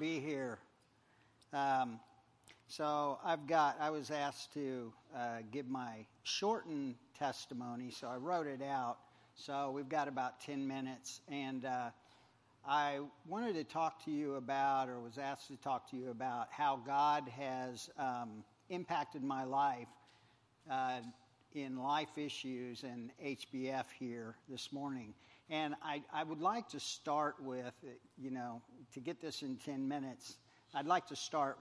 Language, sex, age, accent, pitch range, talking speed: English, male, 50-69, American, 125-150 Hz, 150 wpm